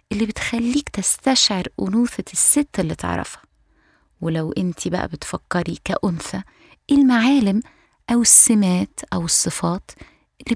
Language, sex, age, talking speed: Arabic, female, 20-39, 100 wpm